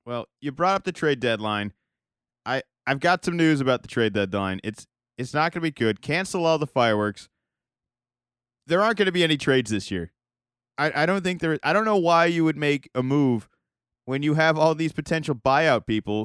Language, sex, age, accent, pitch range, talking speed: English, male, 30-49, American, 120-165 Hz, 215 wpm